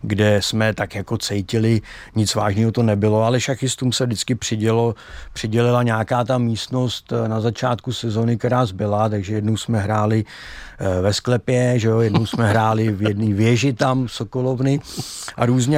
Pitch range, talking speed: 110-125 Hz, 160 wpm